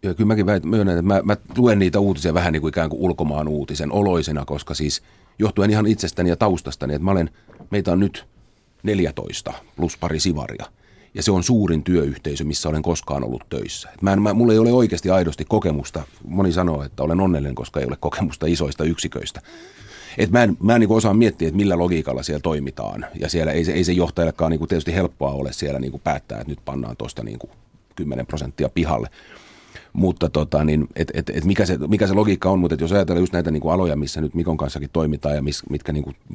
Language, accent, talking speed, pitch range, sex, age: Finnish, native, 210 wpm, 75-90 Hz, male, 30-49